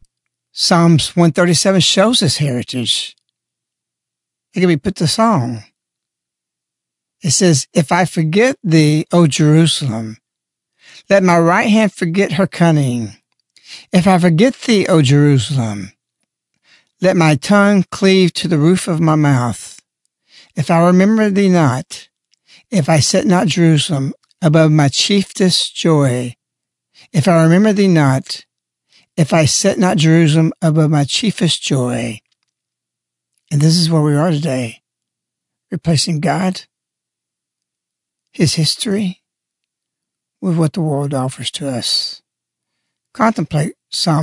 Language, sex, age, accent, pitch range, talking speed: English, male, 60-79, American, 130-180 Hz, 120 wpm